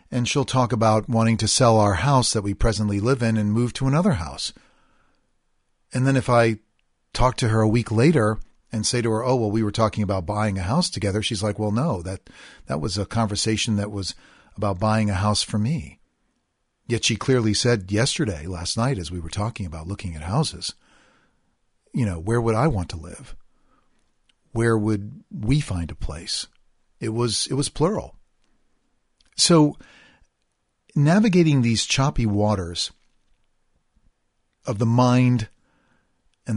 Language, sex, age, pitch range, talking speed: English, male, 40-59, 100-120 Hz, 170 wpm